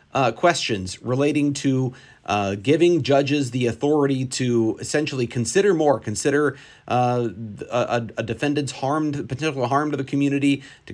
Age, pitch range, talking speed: 40-59, 120-150 Hz, 145 wpm